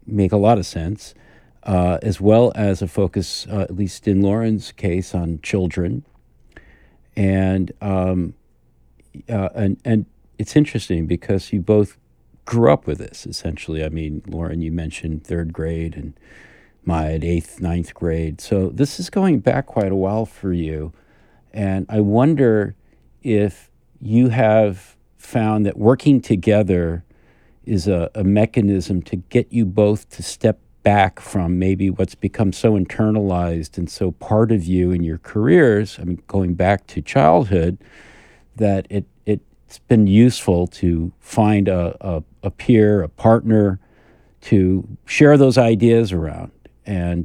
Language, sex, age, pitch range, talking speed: English, male, 50-69, 85-105 Hz, 145 wpm